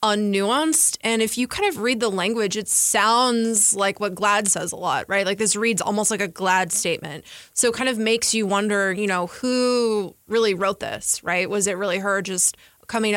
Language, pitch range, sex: English, 190-220 Hz, female